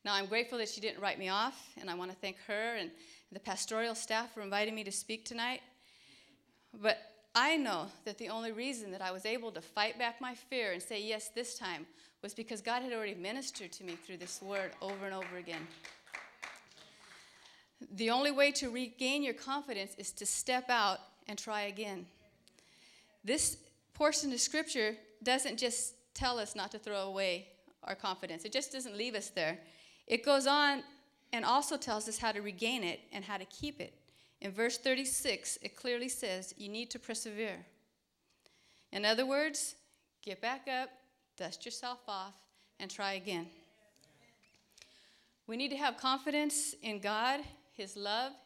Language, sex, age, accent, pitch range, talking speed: English, female, 30-49, American, 200-255 Hz, 175 wpm